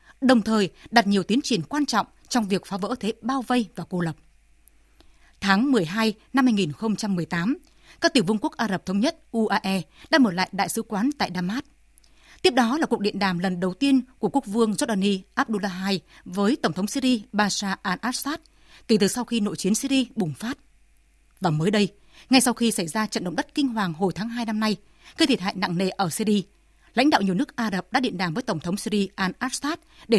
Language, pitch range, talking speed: Vietnamese, 190-255 Hz, 220 wpm